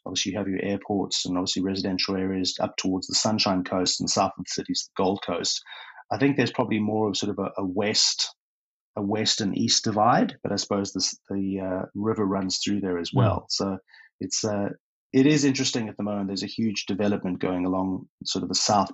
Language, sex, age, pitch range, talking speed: English, male, 30-49, 95-105 Hz, 220 wpm